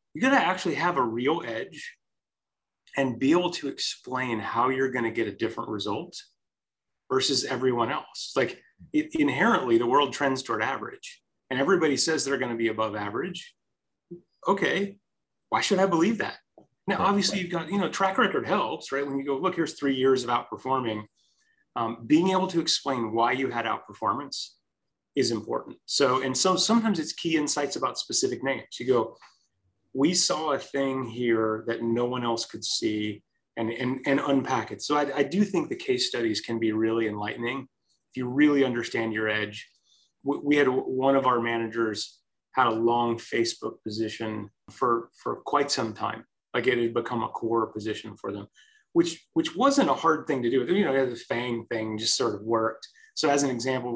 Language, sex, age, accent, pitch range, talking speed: English, male, 30-49, American, 115-150 Hz, 185 wpm